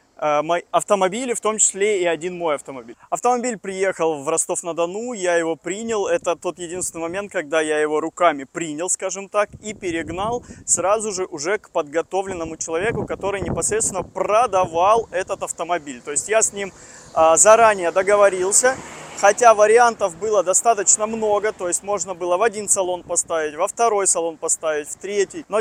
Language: Russian